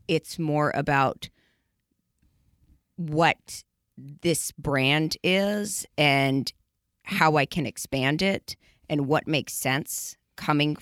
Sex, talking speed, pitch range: female, 100 wpm, 140-175 Hz